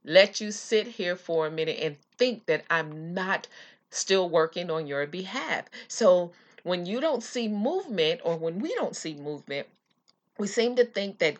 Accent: American